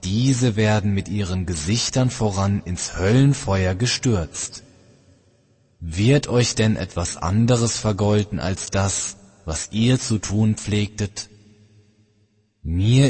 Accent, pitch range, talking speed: German, 90-120 Hz, 105 wpm